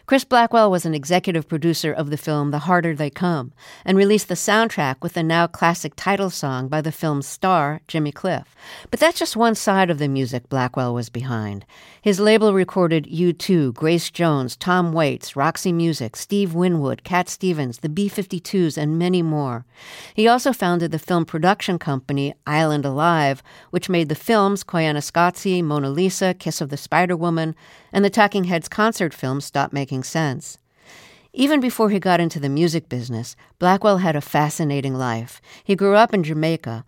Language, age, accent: English, 50-69, American